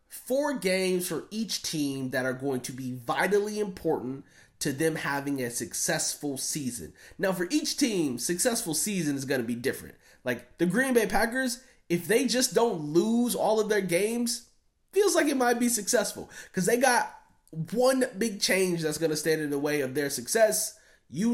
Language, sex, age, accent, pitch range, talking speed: English, male, 20-39, American, 155-215 Hz, 185 wpm